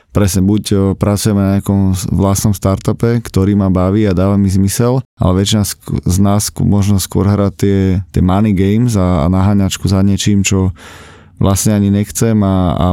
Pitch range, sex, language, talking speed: 95-105 Hz, male, Slovak, 165 wpm